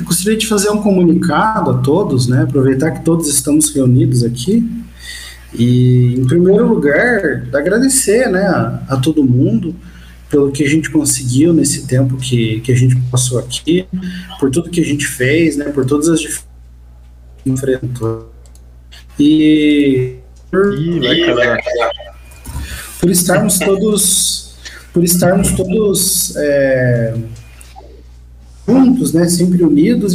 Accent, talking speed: Brazilian, 125 wpm